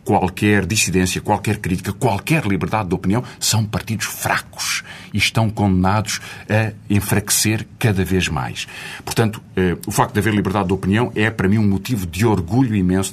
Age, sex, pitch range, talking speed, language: 50-69, male, 95-130 Hz, 165 wpm, Portuguese